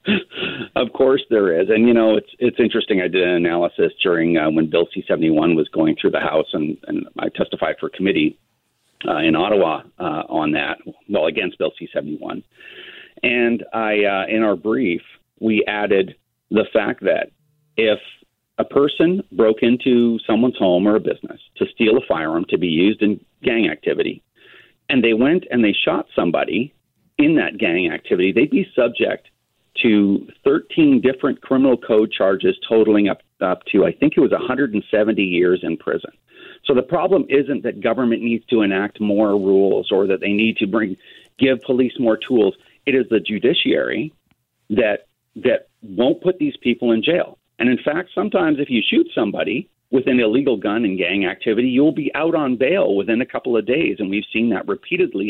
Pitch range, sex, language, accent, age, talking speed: 105-175 Hz, male, English, American, 40-59, 180 wpm